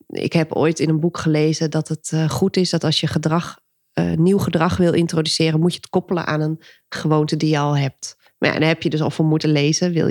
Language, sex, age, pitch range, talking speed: Dutch, female, 30-49, 155-185 Hz, 245 wpm